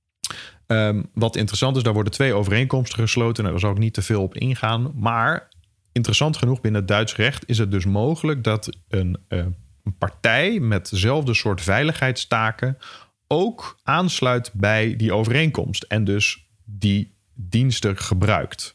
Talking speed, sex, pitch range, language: 155 wpm, male, 100-125 Hz, Dutch